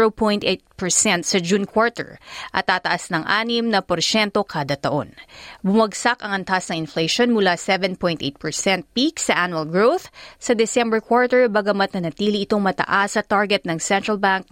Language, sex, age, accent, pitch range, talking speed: Filipino, female, 30-49, native, 185-235 Hz, 145 wpm